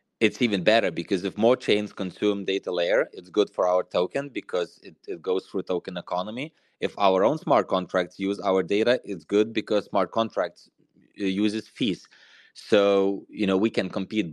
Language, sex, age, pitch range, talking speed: English, male, 20-39, 95-105 Hz, 180 wpm